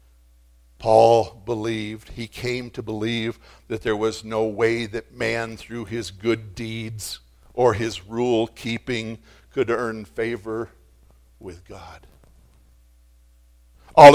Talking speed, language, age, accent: 115 wpm, English, 60-79, American